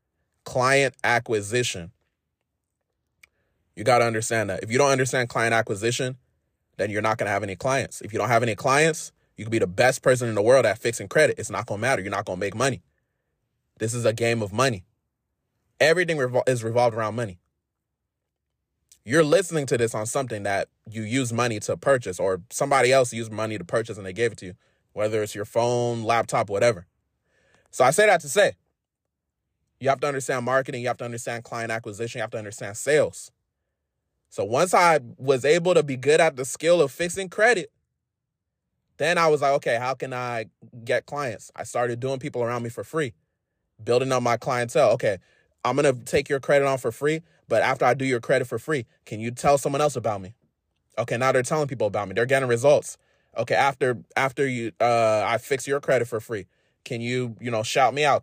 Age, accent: 20-39, American